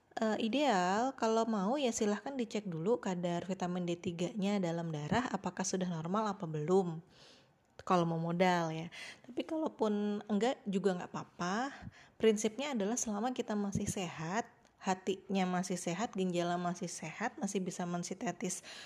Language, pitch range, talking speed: Indonesian, 175-220 Hz, 135 wpm